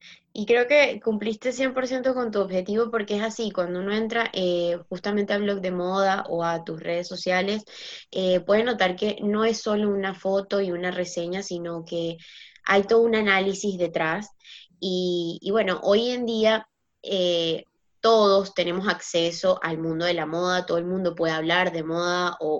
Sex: female